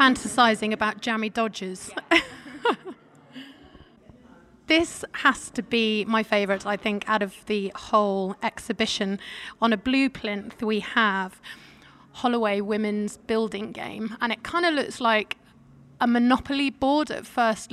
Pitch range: 205-235 Hz